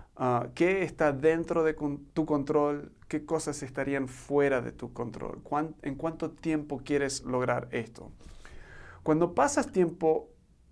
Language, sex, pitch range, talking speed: Spanish, male, 135-160 Hz, 135 wpm